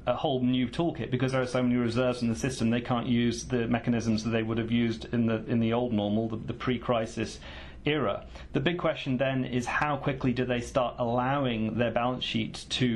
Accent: British